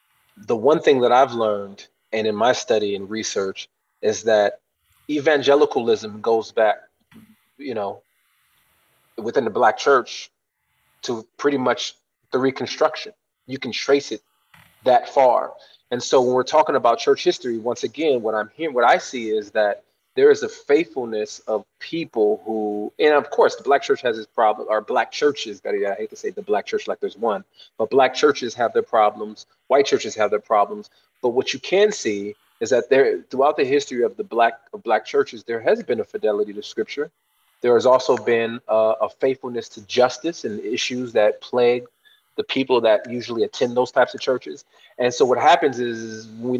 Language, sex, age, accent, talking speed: English, male, 30-49, American, 185 wpm